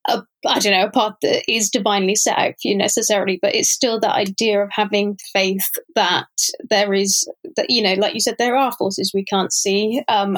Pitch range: 200-245 Hz